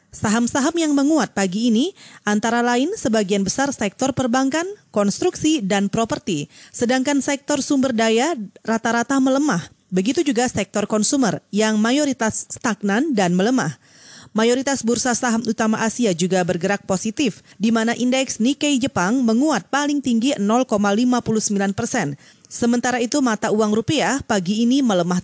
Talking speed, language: 130 wpm, Indonesian